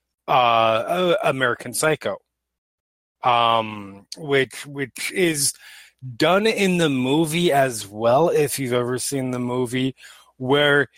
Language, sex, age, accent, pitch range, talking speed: English, male, 30-49, American, 120-150 Hz, 110 wpm